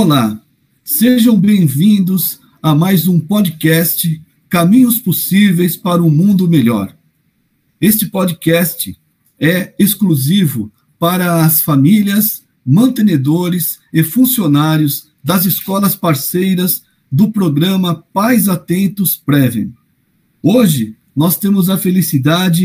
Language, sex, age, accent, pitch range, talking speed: Portuguese, male, 50-69, Brazilian, 160-205 Hz, 95 wpm